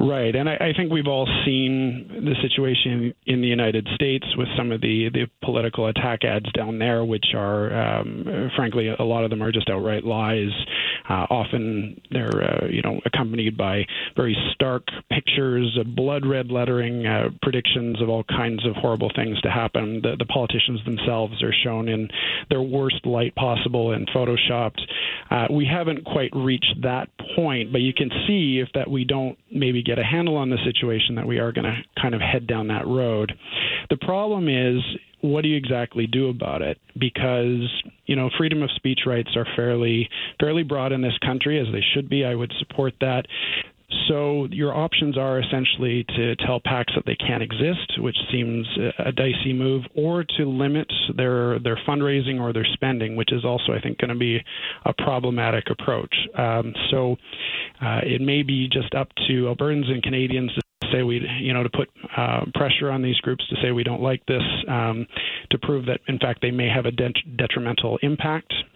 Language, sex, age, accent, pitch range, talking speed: English, male, 40-59, American, 115-135 Hz, 190 wpm